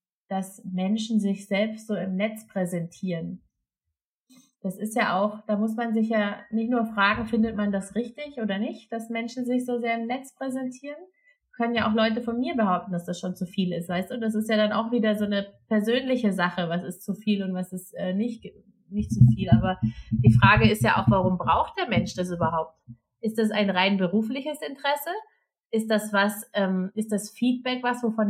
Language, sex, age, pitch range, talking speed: German, female, 30-49, 190-235 Hz, 205 wpm